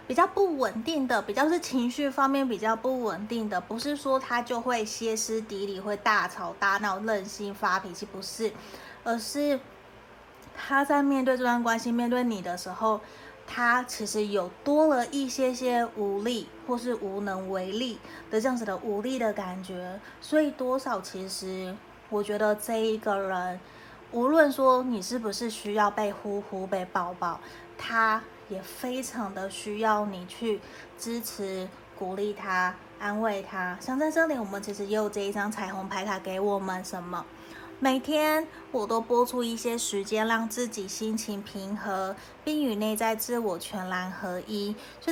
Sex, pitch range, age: female, 200-245 Hz, 20-39